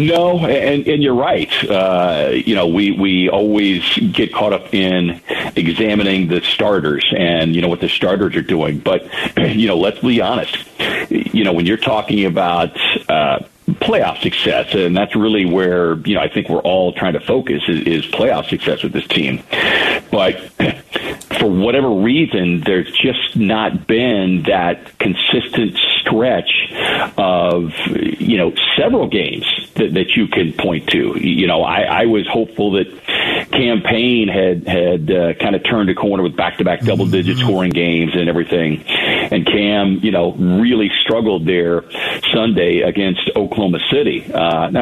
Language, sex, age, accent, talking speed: English, male, 50-69, American, 160 wpm